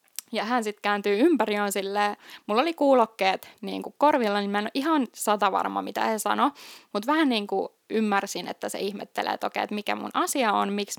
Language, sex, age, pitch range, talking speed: Finnish, female, 20-39, 200-265 Hz, 200 wpm